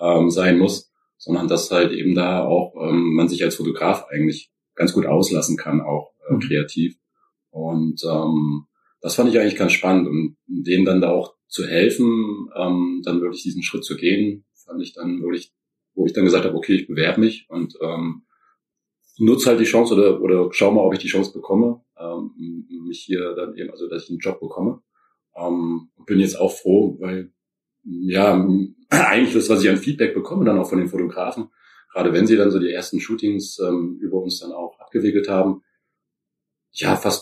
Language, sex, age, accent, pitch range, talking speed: German, male, 40-59, German, 80-95 Hz, 195 wpm